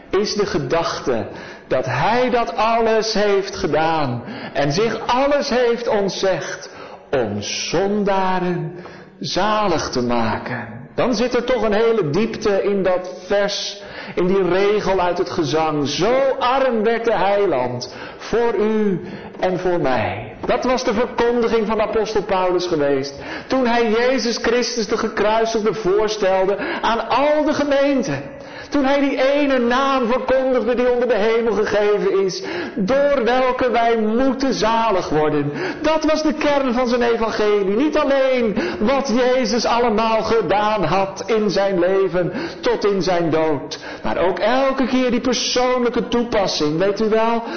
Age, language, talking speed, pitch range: 50-69, Dutch, 145 wpm, 190-255 Hz